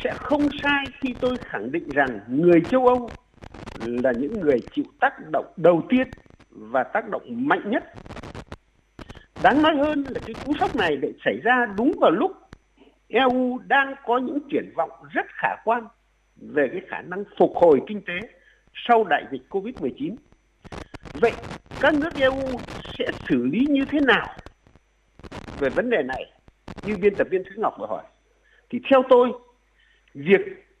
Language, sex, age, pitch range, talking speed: Vietnamese, male, 60-79, 215-290 Hz, 165 wpm